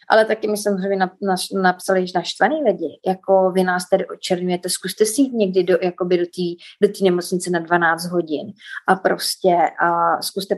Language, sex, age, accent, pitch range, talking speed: Czech, female, 30-49, native, 185-220 Hz, 165 wpm